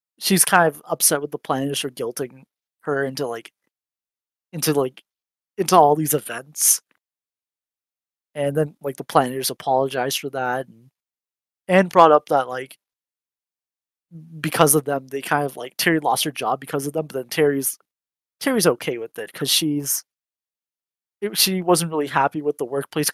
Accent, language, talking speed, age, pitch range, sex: American, English, 165 wpm, 20-39, 130-160 Hz, male